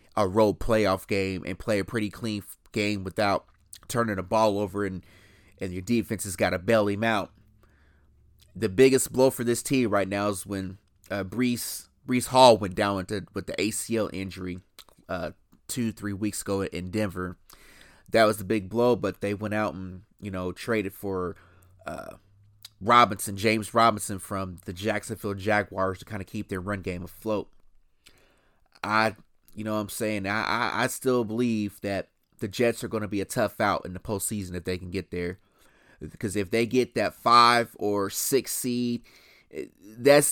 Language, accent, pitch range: English, American, 95-115 Hz